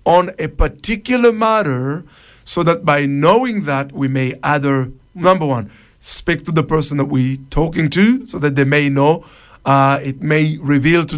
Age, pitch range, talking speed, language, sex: 50-69, 135-175 Hz, 170 wpm, English, male